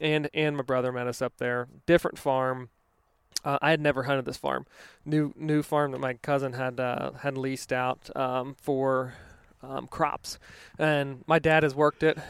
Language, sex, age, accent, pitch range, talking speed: English, male, 20-39, American, 130-150 Hz, 185 wpm